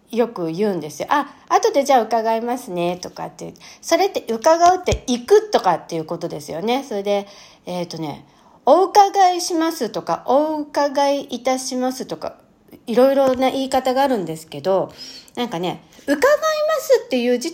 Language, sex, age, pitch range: Japanese, female, 40-59, 215-345 Hz